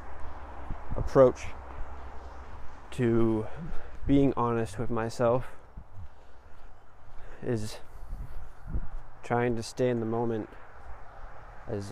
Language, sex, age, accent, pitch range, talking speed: English, male, 20-39, American, 85-120 Hz, 70 wpm